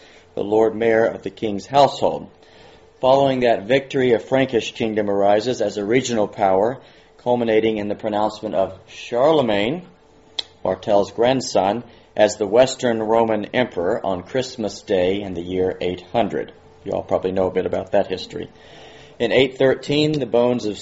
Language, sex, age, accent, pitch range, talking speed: English, male, 40-59, American, 95-120 Hz, 150 wpm